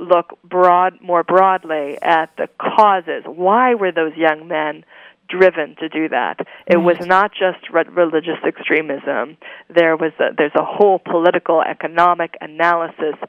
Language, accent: English, American